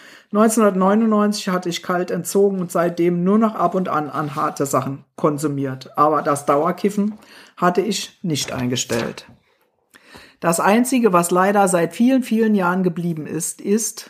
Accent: German